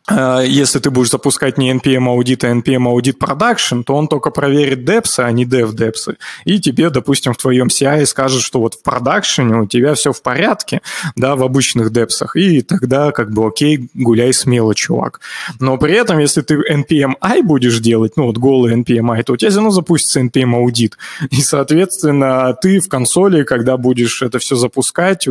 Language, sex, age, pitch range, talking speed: Russian, male, 20-39, 120-150 Hz, 175 wpm